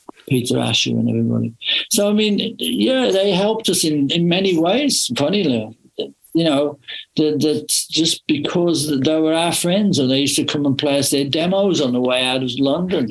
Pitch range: 130-165 Hz